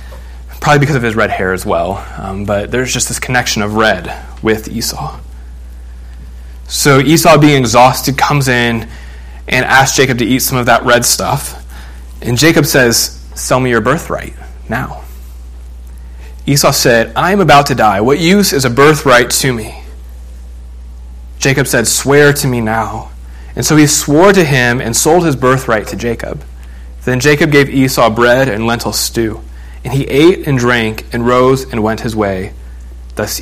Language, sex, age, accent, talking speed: English, male, 30-49, American, 170 wpm